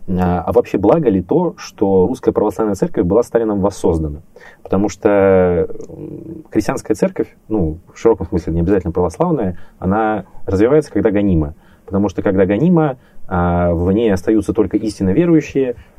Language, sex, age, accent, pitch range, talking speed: Russian, male, 20-39, native, 85-100 Hz, 140 wpm